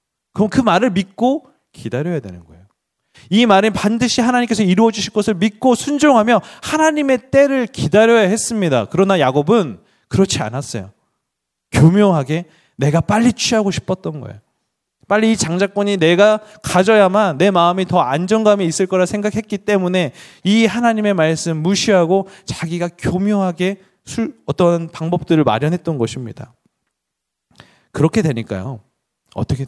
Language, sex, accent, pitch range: Korean, male, native, 135-200 Hz